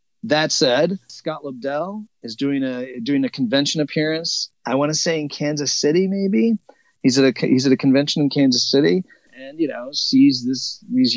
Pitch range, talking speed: 125-200 Hz, 190 wpm